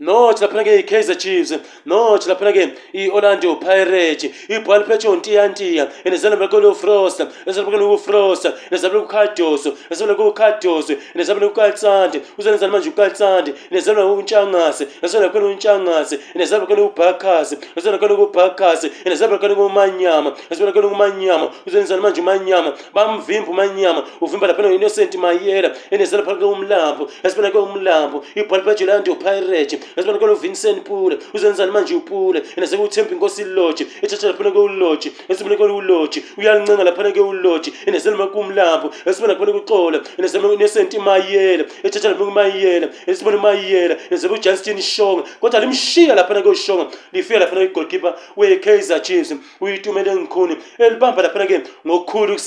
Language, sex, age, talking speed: English, male, 30-49, 65 wpm